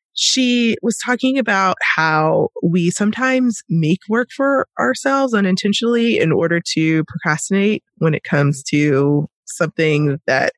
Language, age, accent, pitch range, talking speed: English, 20-39, American, 150-195 Hz, 125 wpm